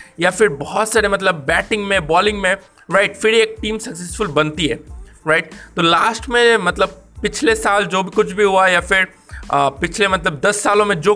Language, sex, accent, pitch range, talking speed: Hindi, male, native, 165-220 Hz, 200 wpm